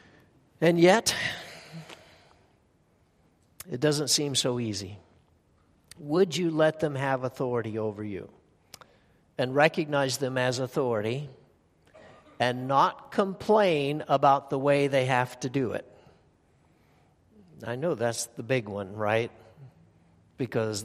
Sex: male